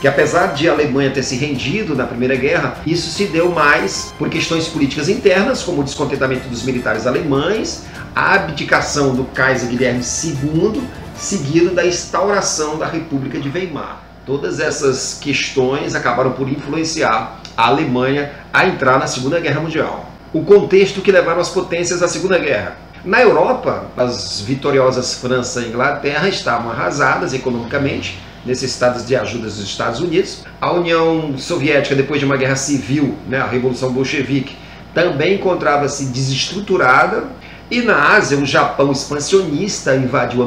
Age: 40-59